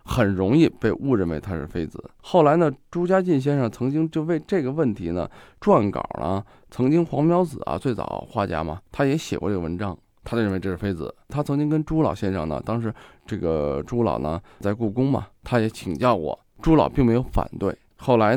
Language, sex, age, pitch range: Chinese, male, 20-39, 95-135 Hz